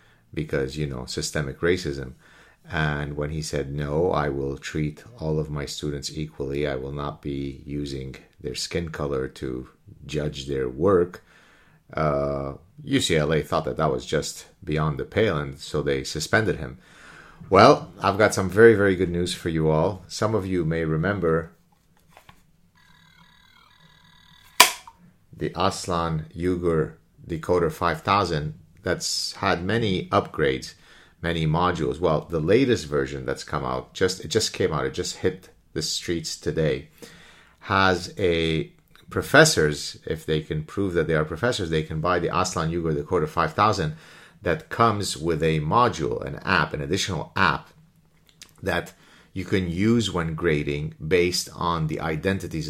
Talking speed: 150 wpm